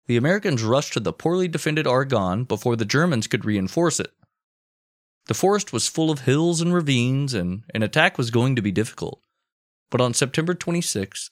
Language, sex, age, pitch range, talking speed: English, male, 20-39, 100-145 Hz, 180 wpm